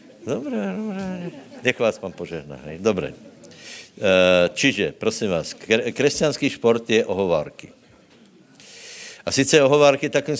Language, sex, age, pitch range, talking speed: Slovak, male, 60-79, 100-120 Hz, 110 wpm